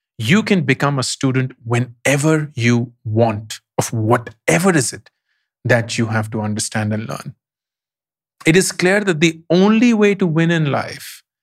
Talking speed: 160 wpm